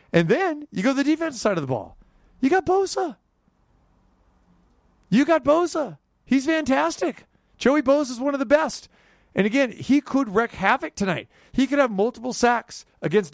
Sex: male